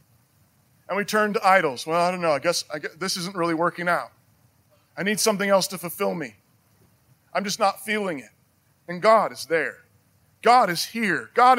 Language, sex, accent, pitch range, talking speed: English, male, American, 150-230 Hz, 190 wpm